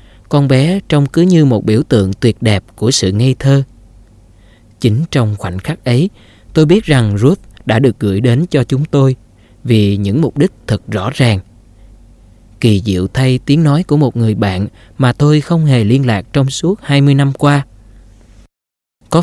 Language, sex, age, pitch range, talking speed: Vietnamese, male, 20-39, 105-135 Hz, 180 wpm